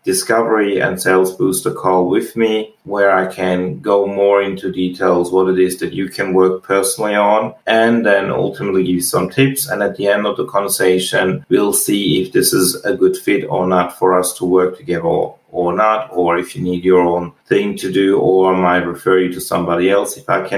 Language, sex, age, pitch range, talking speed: English, male, 30-49, 90-100 Hz, 215 wpm